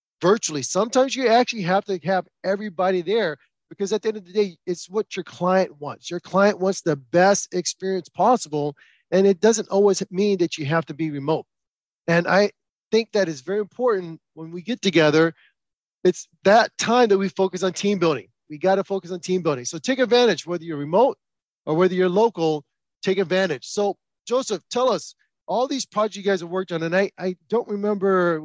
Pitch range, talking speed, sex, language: 160-195 Hz, 205 wpm, male, English